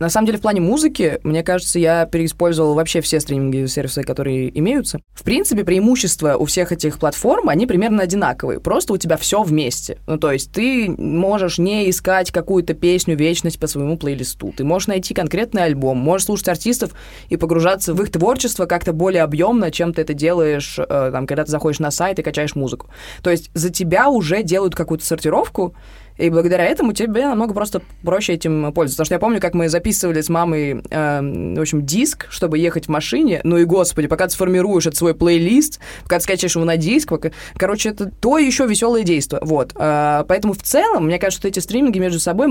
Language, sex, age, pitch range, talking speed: Russian, female, 20-39, 155-195 Hz, 200 wpm